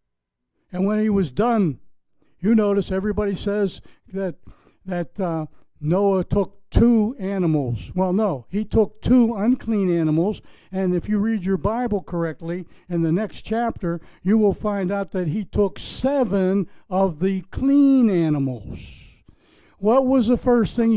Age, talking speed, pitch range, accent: 60-79, 145 wpm, 165-215 Hz, American